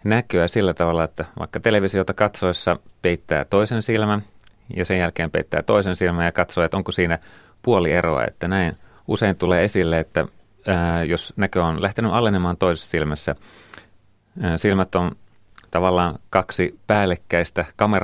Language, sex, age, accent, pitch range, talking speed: Finnish, male, 30-49, native, 85-100 Hz, 145 wpm